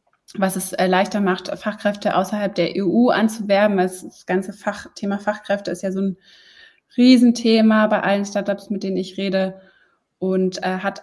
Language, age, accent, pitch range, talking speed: German, 20-39, German, 175-200 Hz, 160 wpm